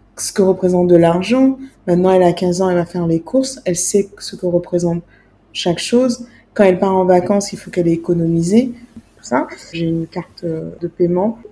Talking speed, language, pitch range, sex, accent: 205 wpm, French, 175-210 Hz, female, French